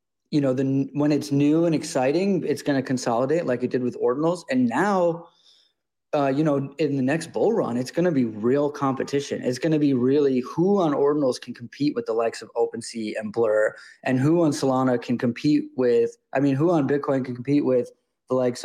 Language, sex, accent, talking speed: English, male, American, 215 wpm